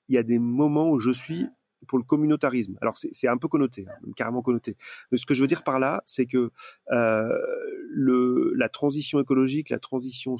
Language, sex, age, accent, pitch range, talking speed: French, male, 30-49, French, 115-135 Hz, 215 wpm